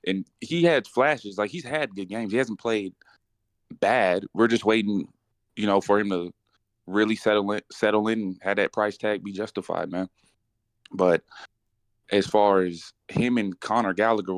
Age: 20-39